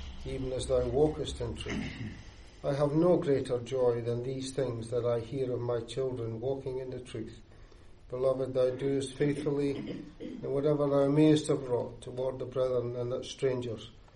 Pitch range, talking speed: 115-140 Hz, 170 wpm